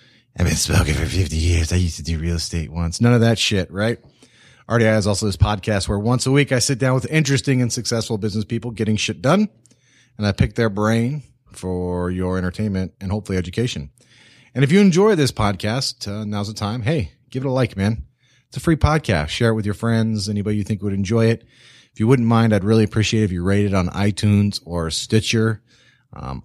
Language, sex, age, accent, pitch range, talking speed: English, male, 30-49, American, 100-130 Hz, 220 wpm